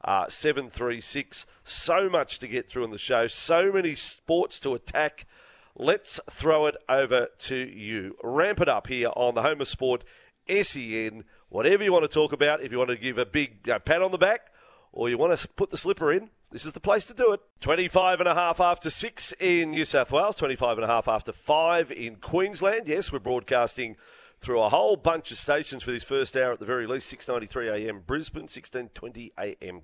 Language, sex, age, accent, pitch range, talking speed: English, male, 40-59, Australian, 120-180 Hz, 195 wpm